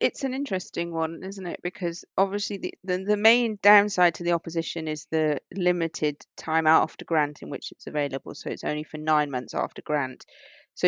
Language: English